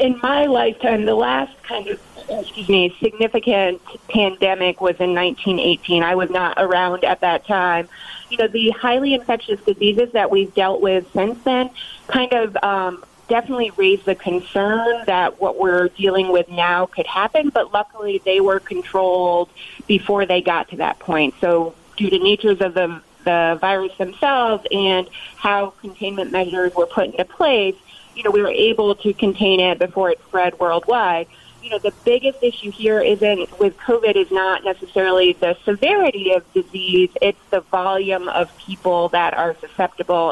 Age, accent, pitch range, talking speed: 30-49, American, 180-215 Hz, 165 wpm